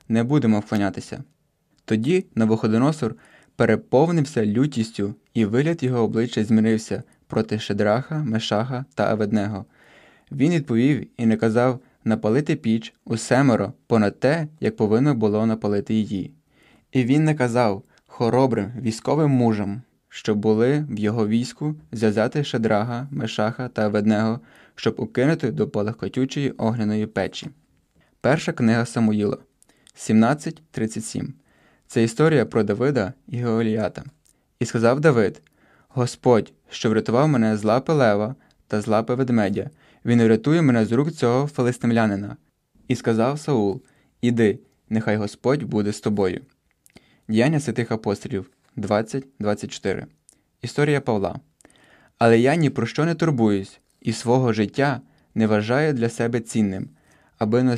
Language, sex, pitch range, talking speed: Ukrainian, male, 110-130 Hz, 125 wpm